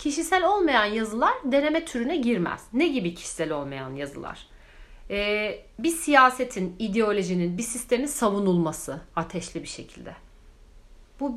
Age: 40-59